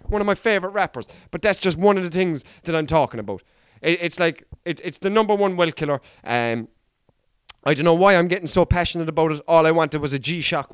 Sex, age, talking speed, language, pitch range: male, 30-49, 240 wpm, English, 160-240 Hz